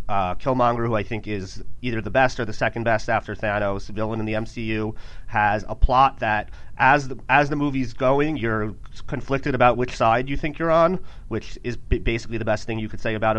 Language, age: English, 30-49